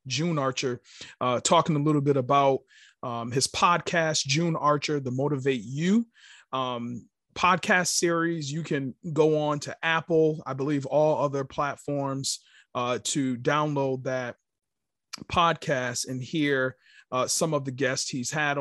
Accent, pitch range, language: American, 130-160 Hz, English